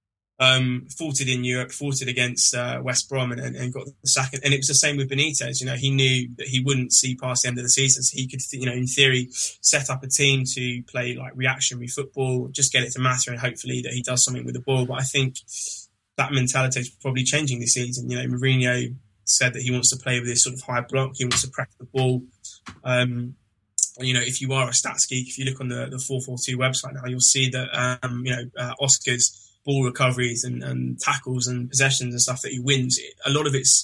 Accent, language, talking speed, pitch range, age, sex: British, English, 250 wpm, 125-135 Hz, 20-39, male